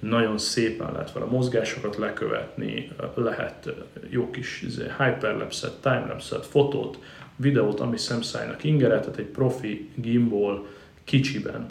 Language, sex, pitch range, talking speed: Hungarian, male, 110-130 Hz, 115 wpm